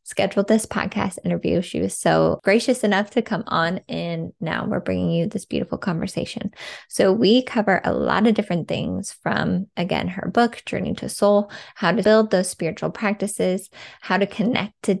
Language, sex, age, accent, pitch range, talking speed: English, female, 20-39, American, 180-215 Hz, 180 wpm